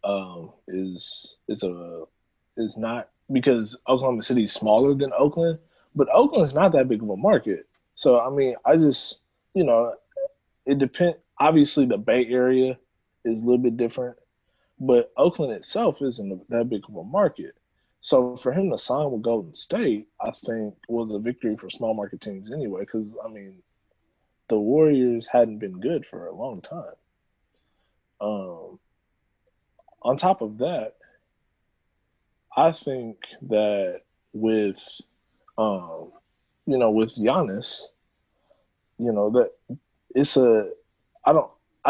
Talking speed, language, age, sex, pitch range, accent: 140 wpm, English, 20-39, male, 100-130 Hz, American